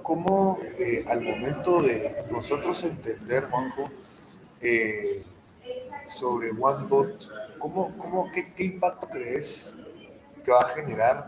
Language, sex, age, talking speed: Spanish, male, 40-59, 110 wpm